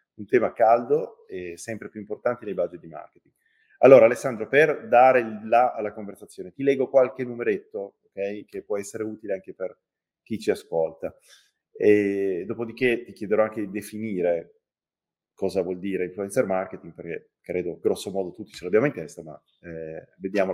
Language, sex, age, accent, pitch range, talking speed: Italian, male, 30-49, native, 100-130 Hz, 160 wpm